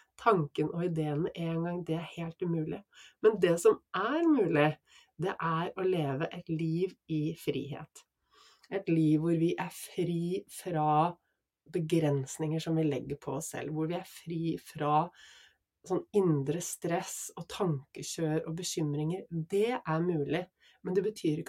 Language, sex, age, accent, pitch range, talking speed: English, female, 30-49, Swedish, 150-185 Hz, 170 wpm